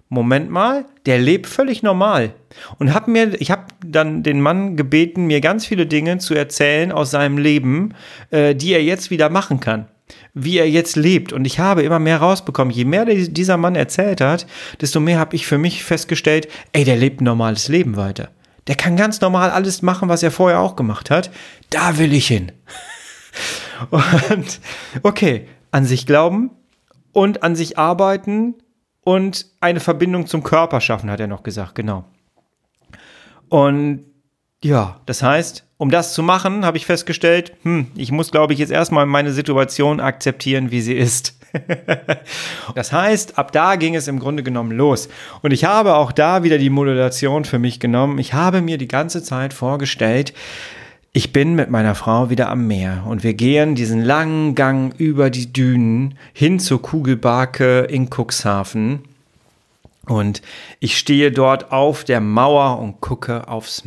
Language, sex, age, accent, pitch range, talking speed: German, male, 40-59, German, 125-170 Hz, 170 wpm